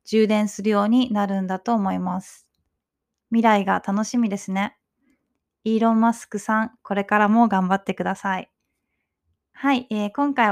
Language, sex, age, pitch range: Japanese, female, 20-39, 200-250 Hz